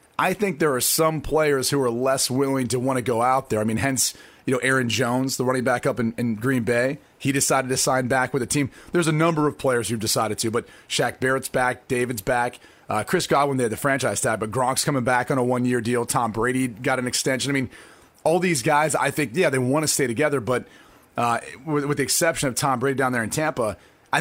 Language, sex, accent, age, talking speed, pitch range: English, male, American, 30-49, 250 wpm, 125-160 Hz